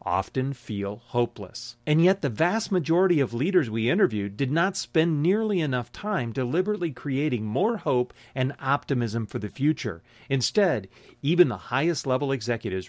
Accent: American